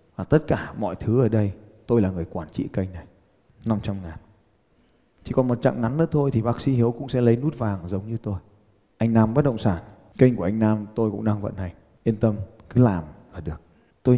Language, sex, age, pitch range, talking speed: Vietnamese, male, 20-39, 100-125 Hz, 235 wpm